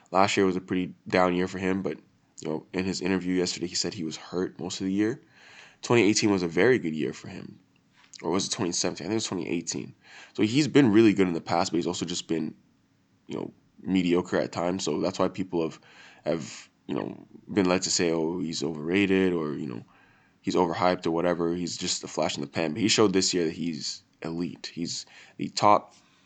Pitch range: 90-95 Hz